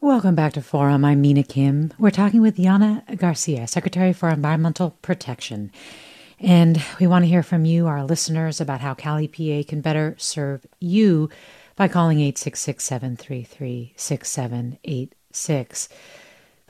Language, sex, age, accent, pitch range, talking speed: English, female, 40-59, American, 145-190 Hz, 135 wpm